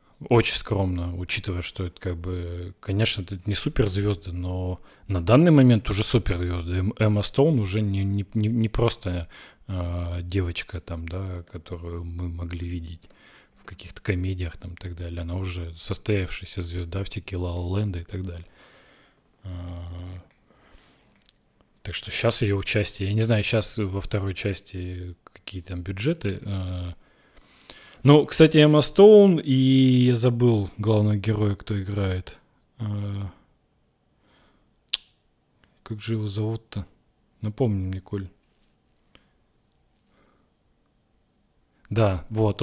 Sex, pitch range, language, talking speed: male, 90-110 Hz, Russian, 120 wpm